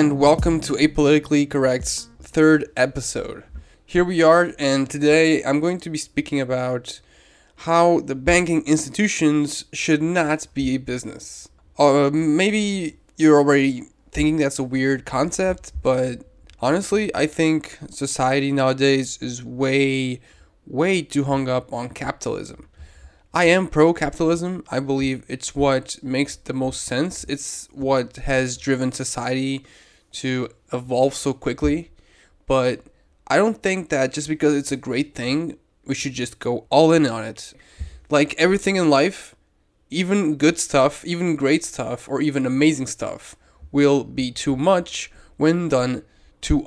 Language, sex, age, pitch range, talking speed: English, male, 10-29, 130-160 Hz, 145 wpm